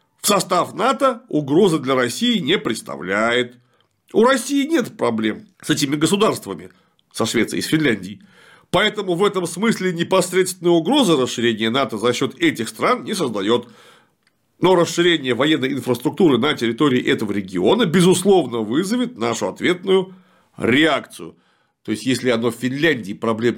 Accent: native